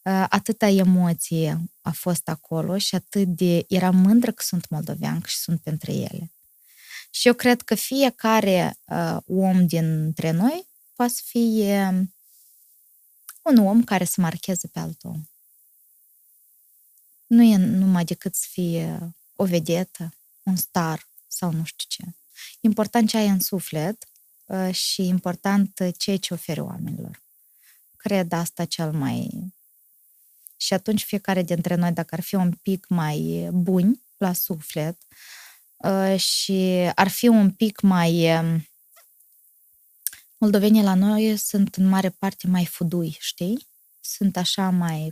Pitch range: 170-200 Hz